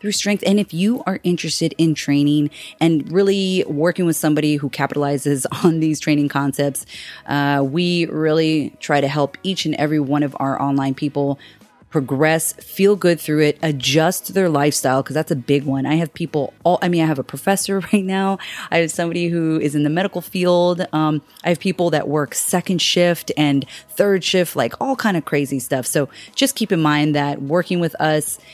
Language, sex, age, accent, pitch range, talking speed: English, female, 30-49, American, 145-180 Hz, 200 wpm